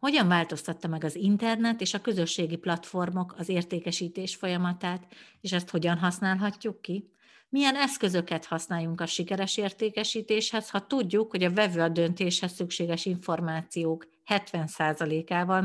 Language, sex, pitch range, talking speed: Hungarian, female, 165-195 Hz, 125 wpm